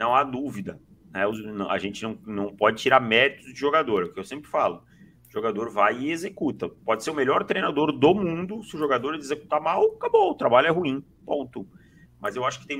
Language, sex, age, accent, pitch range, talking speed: Portuguese, male, 40-59, Brazilian, 110-150 Hz, 215 wpm